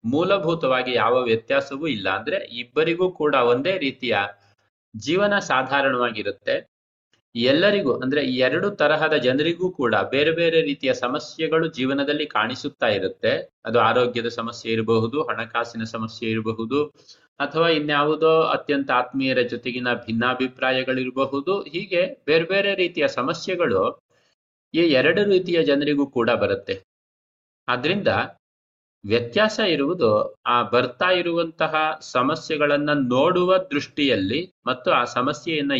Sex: male